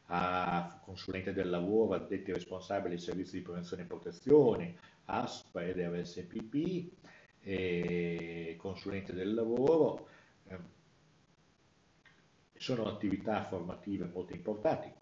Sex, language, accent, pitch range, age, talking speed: male, Italian, native, 90-110 Hz, 60-79, 95 wpm